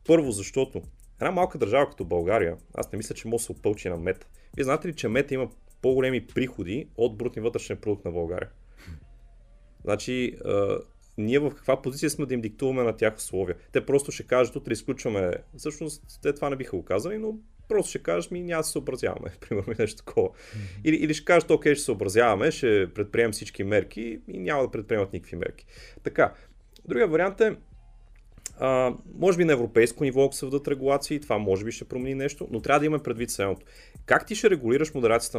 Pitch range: 110-145 Hz